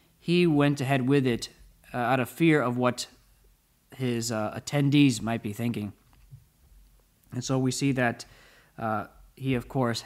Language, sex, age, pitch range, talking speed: English, male, 20-39, 120-145 Hz, 155 wpm